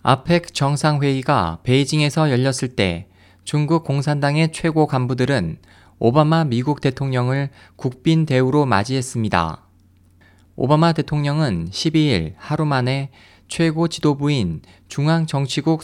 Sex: male